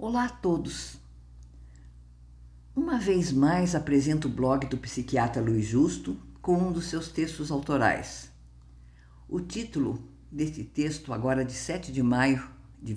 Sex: female